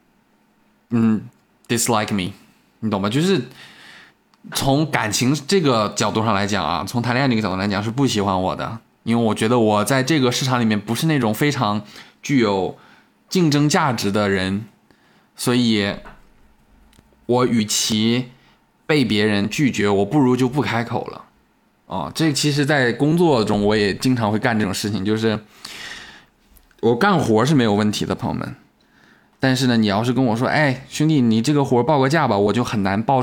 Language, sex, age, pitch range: Chinese, male, 20-39, 105-130 Hz